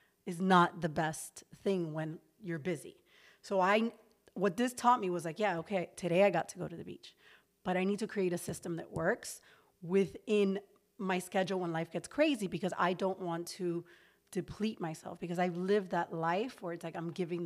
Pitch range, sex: 175-205 Hz, female